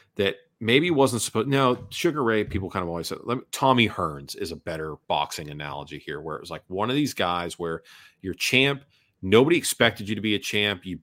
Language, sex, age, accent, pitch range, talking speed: English, male, 40-59, American, 85-105 Hz, 210 wpm